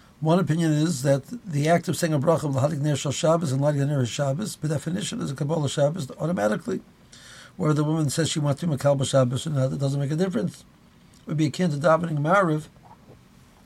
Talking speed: 215 wpm